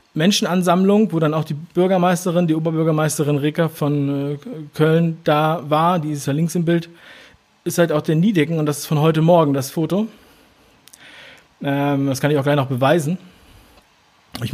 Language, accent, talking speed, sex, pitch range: German, German, 170 wpm, male, 145-175 Hz